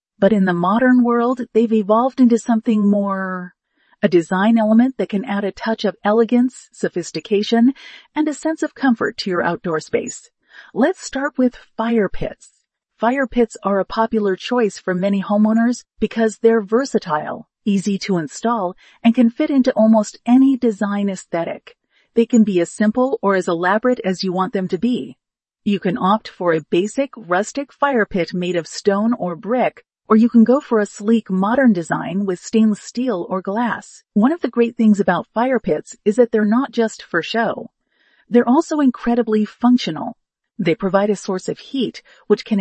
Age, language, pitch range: 40-59, English, 195-240 Hz